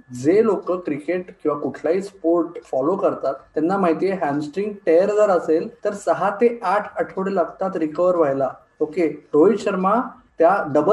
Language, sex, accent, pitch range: Marathi, male, native, 165-220 Hz